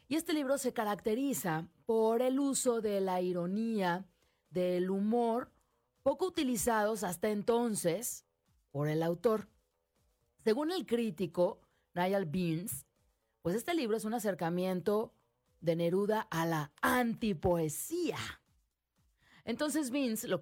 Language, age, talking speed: Spanish, 30-49, 115 wpm